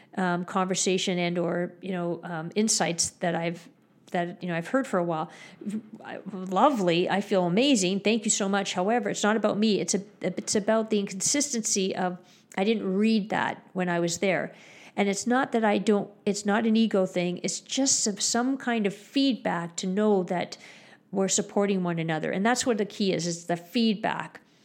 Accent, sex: American, female